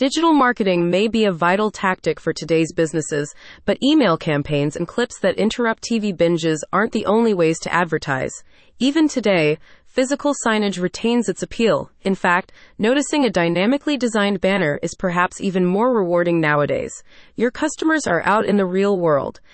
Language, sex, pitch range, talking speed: English, female, 170-235 Hz, 165 wpm